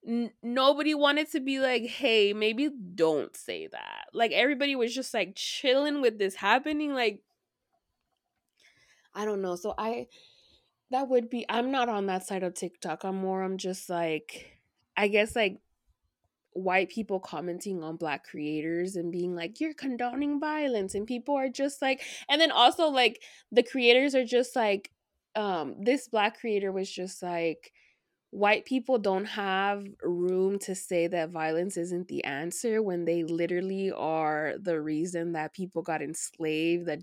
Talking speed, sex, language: 160 wpm, female, English